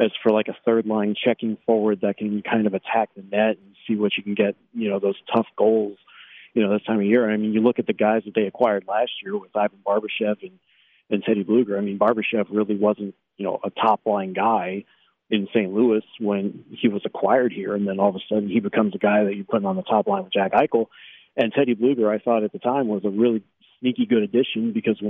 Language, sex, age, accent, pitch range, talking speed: English, male, 40-59, American, 105-125 Hz, 245 wpm